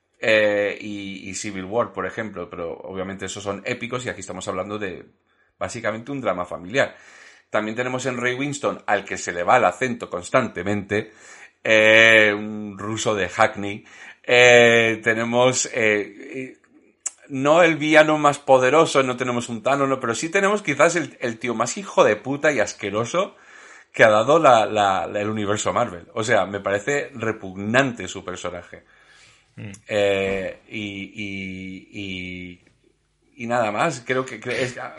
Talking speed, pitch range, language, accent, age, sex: 155 wpm, 100-130 Hz, Spanish, Spanish, 40-59, male